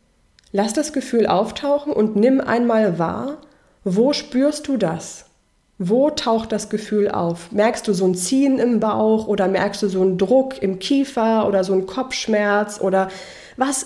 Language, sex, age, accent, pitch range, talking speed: German, female, 20-39, German, 195-240 Hz, 165 wpm